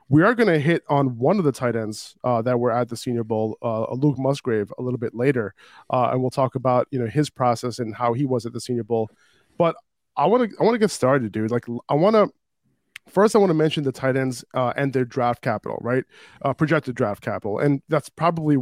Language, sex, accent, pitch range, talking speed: English, male, American, 125-145 Hz, 250 wpm